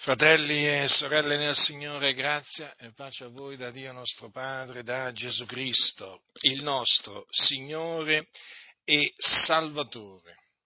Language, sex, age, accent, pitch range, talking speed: Italian, male, 50-69, native, 120-145 Hz, 125 wpm